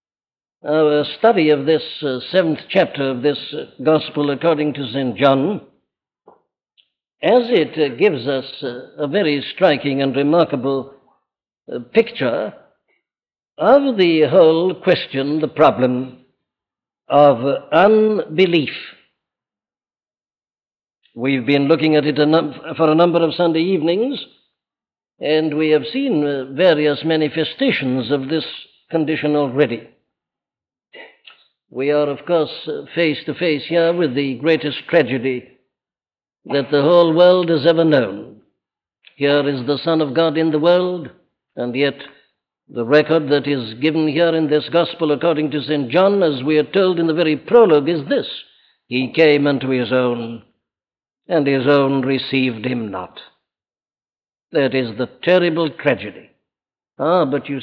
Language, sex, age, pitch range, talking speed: English, male, 60-79, 140-170 Hz, 130 wpm